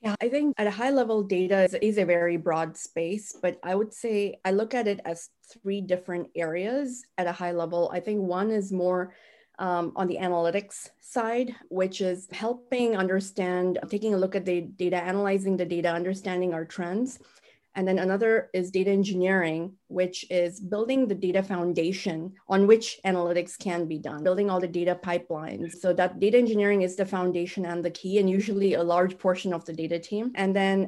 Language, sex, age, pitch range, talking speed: English, female, 30-49, 175-210 Hz, 190 wpm